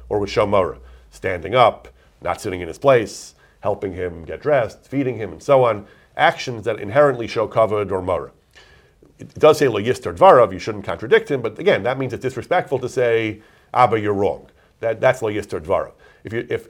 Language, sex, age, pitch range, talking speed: English, male, 40-59, 90-110 Hz, 195 wpm